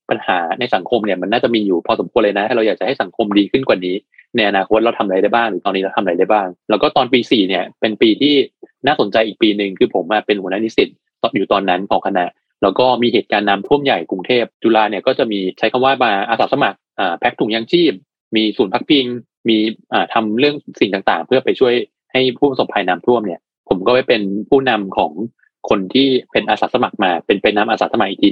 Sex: male